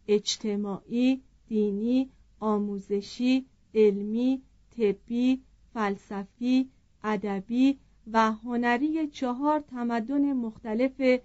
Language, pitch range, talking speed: Persian, 215-285 Hz, 65 wpm